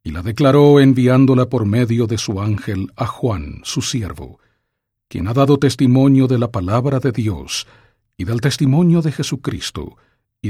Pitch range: 100-130 Hz